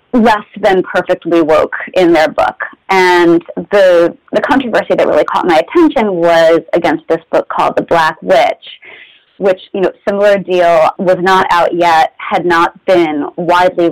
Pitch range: 170-210 Hz